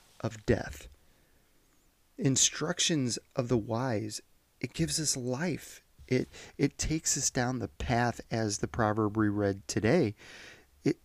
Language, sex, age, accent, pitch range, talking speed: English, male, 30-49, American, 95-130 Hz, 130 wpm